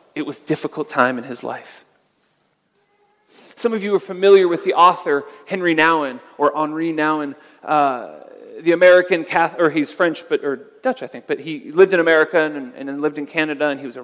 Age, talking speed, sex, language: 40-59, 200 wpm, male, English